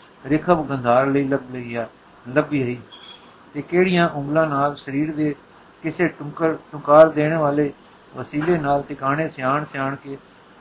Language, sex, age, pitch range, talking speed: Punjabi, male, 60-79, 140-160 Hz, 130 wpm